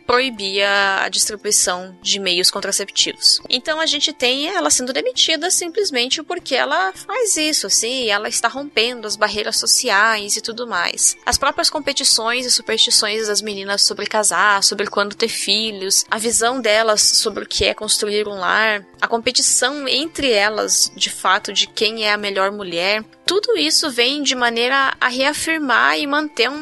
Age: 20-39